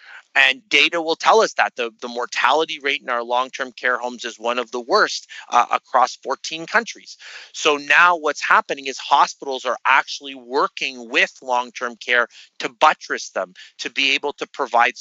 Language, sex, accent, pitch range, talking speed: English, male, American, 120-145 Hz, 175 wpm